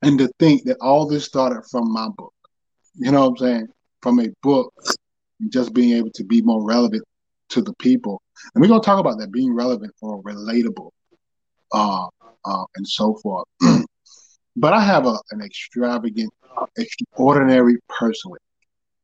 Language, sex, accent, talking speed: English, male, American, 165 wpm